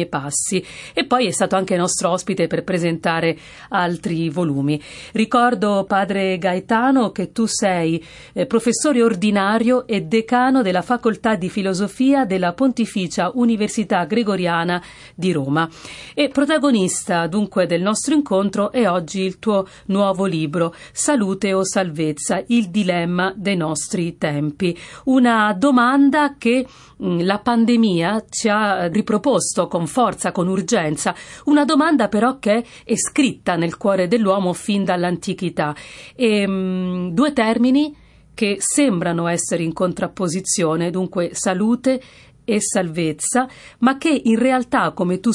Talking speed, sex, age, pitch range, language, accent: 125 wpm, female, 40-59, 175-230 Hz, Italian, native